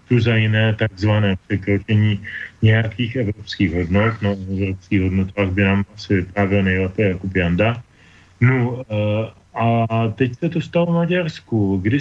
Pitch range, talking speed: 100-130 Hz, 135 wpm